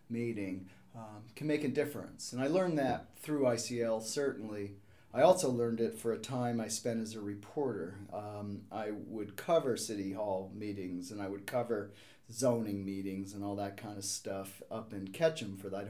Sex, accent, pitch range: male, American, 105-125 Hz